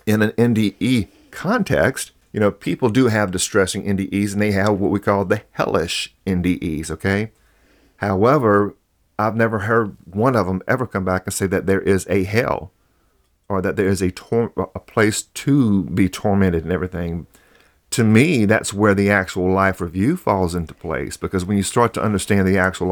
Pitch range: 90-105 Hz